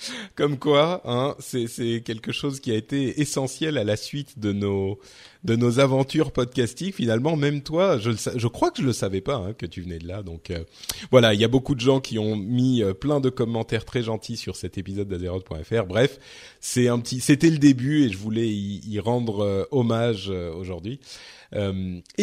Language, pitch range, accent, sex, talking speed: French, 110-145 Hz, French, male, 210 wpm